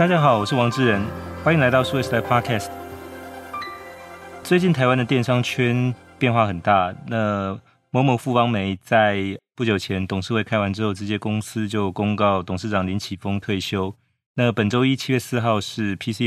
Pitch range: 95-120 Hz